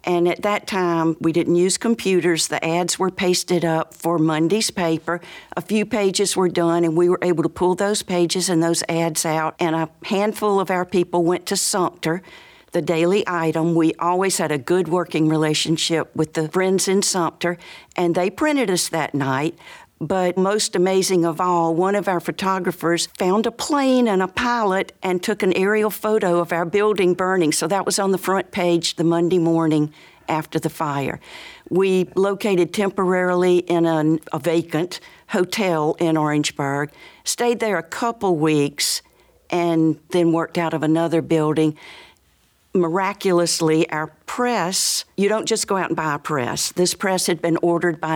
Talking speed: 175 wpm